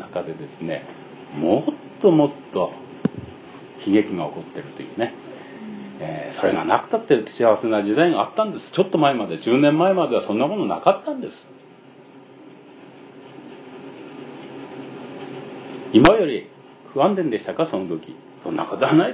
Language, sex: Japanese, male